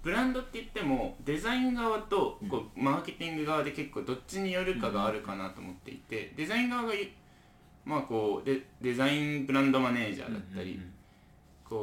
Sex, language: male, Japanese